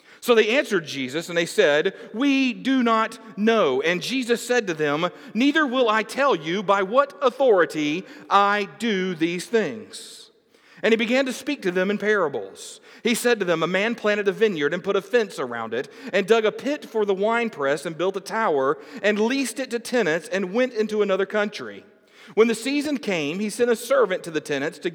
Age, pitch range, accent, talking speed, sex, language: 40-59, 185-260 Hz, American, 205 wpm, male, English